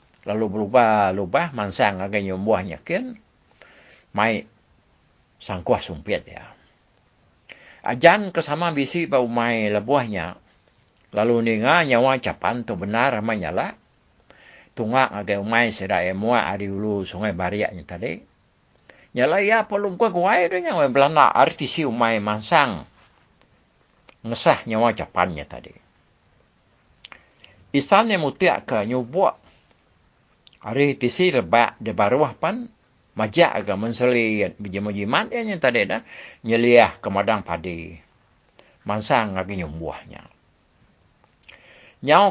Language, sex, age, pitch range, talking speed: English, male, 60-79, 105-145 Hz, 105 wpm